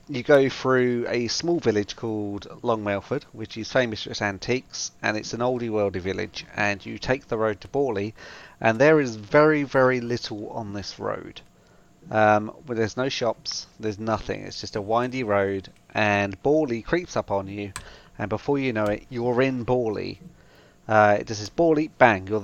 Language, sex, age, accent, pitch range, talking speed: English, male, 40-59, British, 105-125 Hz, 185 wpm